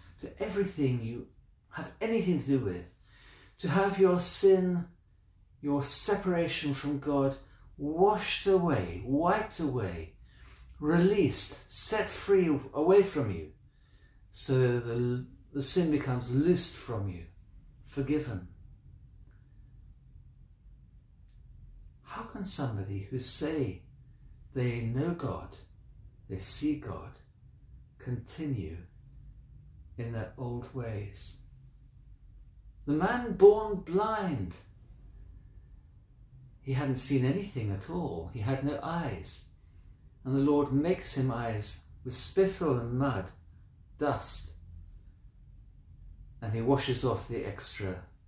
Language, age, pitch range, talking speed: English, 50-69, 100-145 Hz, 100 wpm